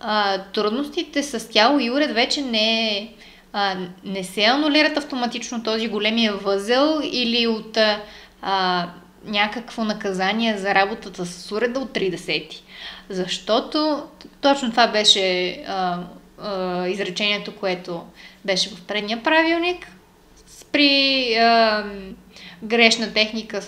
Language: Bulgarian